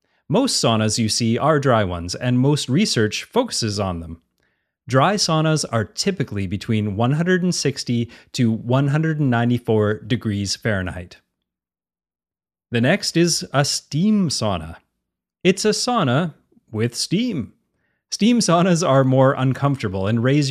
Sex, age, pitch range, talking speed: male, 30-49, 105-150 Hz, 120 wpm